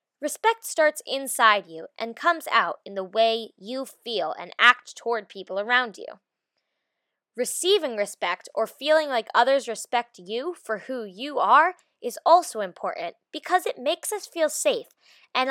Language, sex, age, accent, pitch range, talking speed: English, female, 20-39, American, 220-320 Hz, 155 wpm